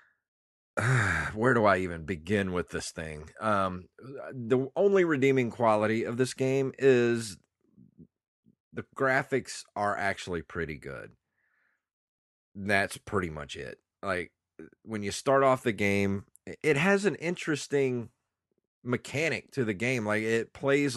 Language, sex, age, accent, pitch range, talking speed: English, male, 30-49, American, 90-120 Hz, 130 wpm